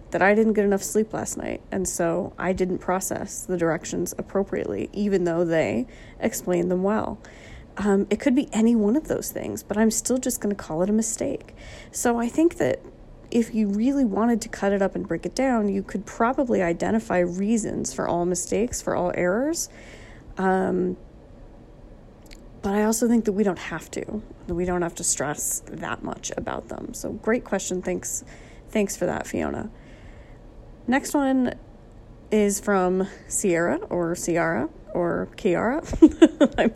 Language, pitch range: English, 170-220 Hz